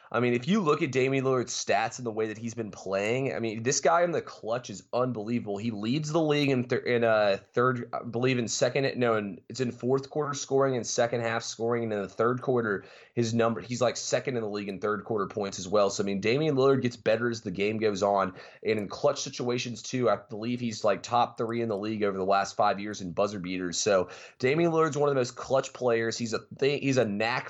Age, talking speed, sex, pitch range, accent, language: 20-39, 255 wpm, male, 105-125 Hz, American, English